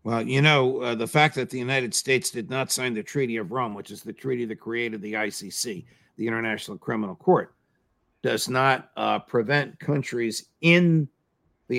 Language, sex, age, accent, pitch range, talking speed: English, male, 60-79, American, 110-140 Hz, 185 wpm